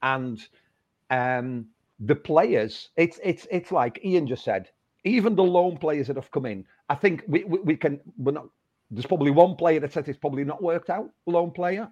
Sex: male